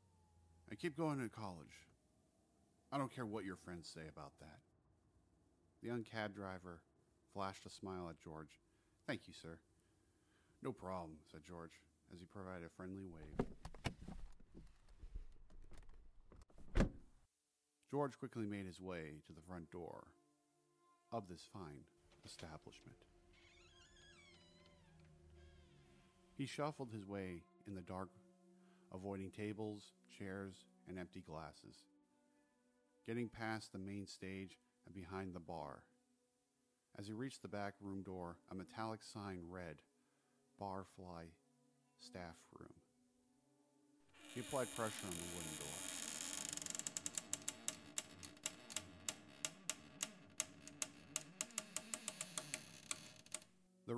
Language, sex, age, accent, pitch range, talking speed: English, male, 50-69, American, 85-115 Hz, 105 wpm